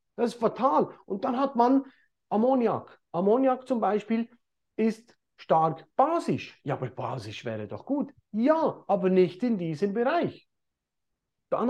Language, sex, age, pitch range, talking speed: German, male, 40-59, 180-245 Hz, 140 wpm